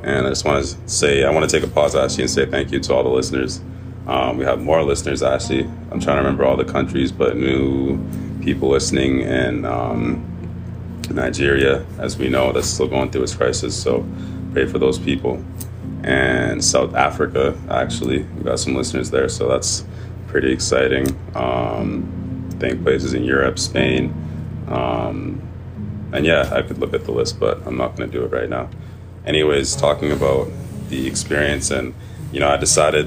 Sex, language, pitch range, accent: male, English, 65-90 Hz, American